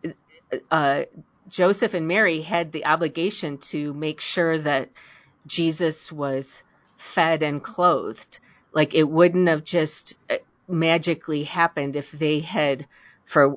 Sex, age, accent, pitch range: female, 40-59, American, 145-165 Hz